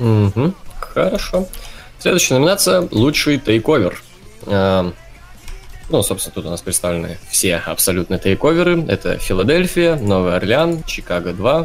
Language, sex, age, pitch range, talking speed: Russian, male, 20-39, 95-120 Hz, 125 wpm